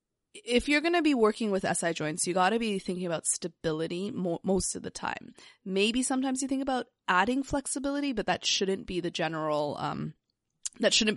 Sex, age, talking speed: female, 20-39, 200 wpm